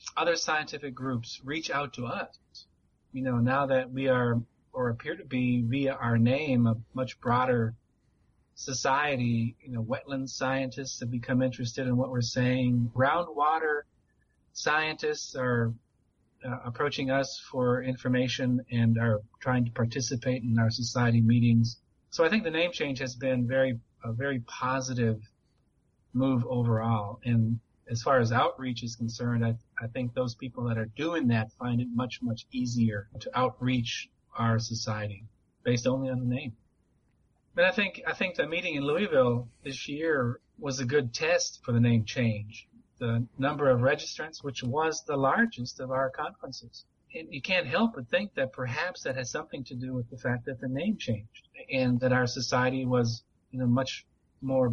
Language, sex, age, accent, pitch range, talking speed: English, male, 30-49, American, 115-135 Hz, 170 wpm